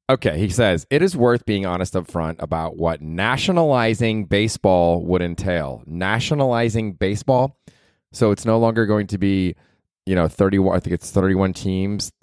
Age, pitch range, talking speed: 20-39, 90-115 Hz, 160 wpm